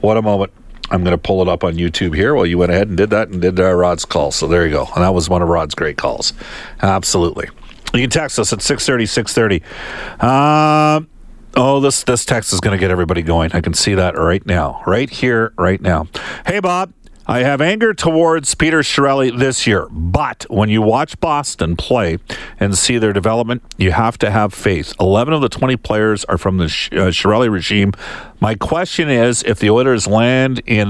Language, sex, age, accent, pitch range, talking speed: English, male, 50-69, American, 90-110 Hz, 210 wpm